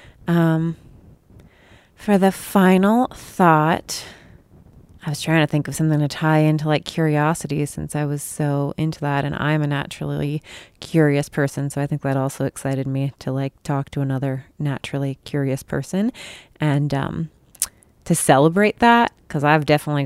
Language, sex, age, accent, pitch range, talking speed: English, female, 30-49, American, 145-205 Hz, 155 wpm